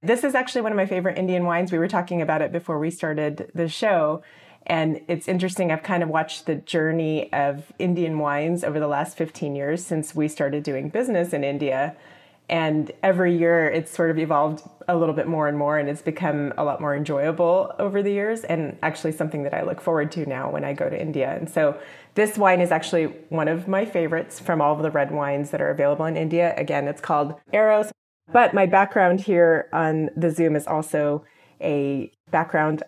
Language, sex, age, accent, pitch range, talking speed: English, female, 30-49, American, 150-175 Hz, 210 wpm